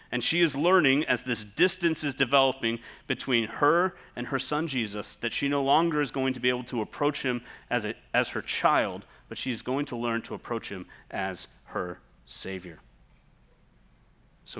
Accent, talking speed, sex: American, 185 wpm, male